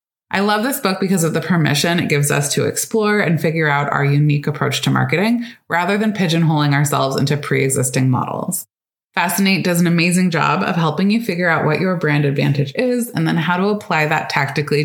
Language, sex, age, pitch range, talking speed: English, female, 20-39, 150-200 Hz, 200 wpm